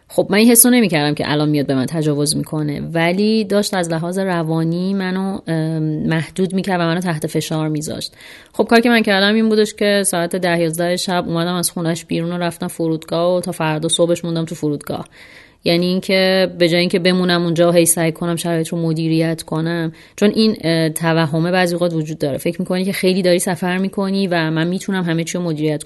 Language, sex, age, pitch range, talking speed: Persian, female, 30-49, 165-195 Hz, 195 wpm